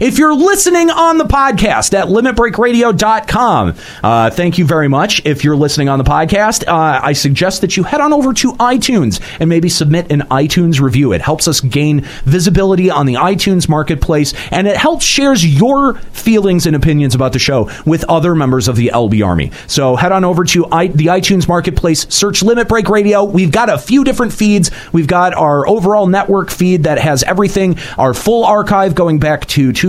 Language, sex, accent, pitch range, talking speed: English, male, American, 145-205 Hz, 190 wpm